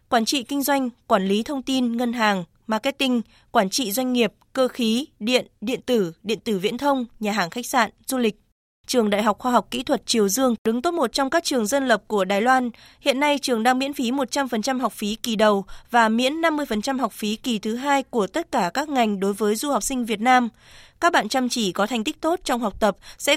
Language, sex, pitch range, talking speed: Vietnamese, female, 220-275 Hz, 240 wpm